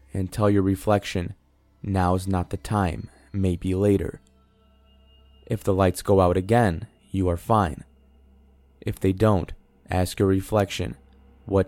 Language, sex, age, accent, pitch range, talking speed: English, male, 20-39, American, 75-100 Hz, 135 wpm